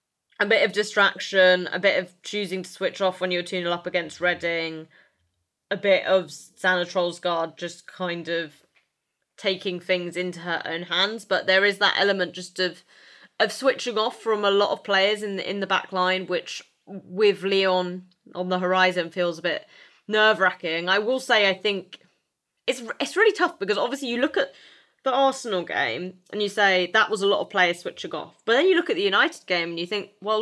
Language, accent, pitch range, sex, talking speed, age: English, British, 180-215 Hz, female, 205 wpm, 20-39